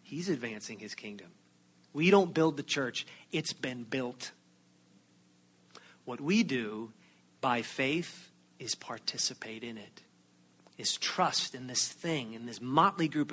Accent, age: American, 40-59